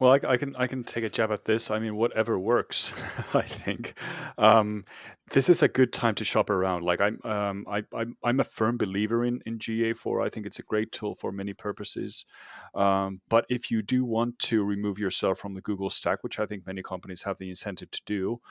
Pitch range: 90-110 Hz